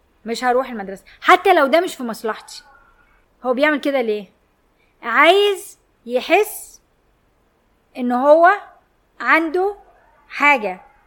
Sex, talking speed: female, 105 wpm